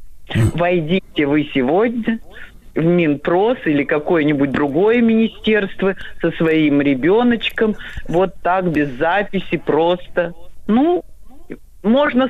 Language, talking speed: Russian, 95 wpm